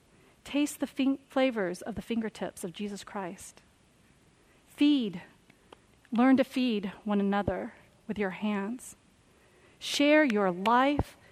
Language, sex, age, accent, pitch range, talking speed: English, female, 40-59, American, 185-240 Hz, 110 wpm